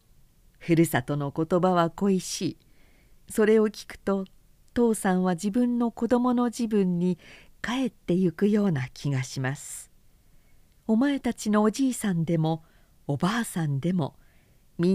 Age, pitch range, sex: 50-69, 145-215 Hz, female